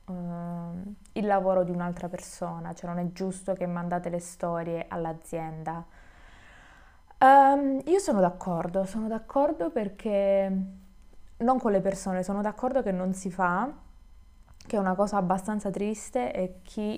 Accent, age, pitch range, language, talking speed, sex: native, 20-39, 180-205 Hz, Italian, 135 wpm, female